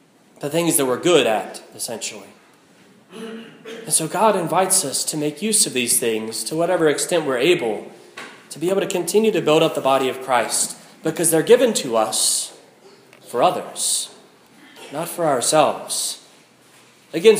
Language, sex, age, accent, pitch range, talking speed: English, male, 30-49, American, 135-170 Hz, 160 wpm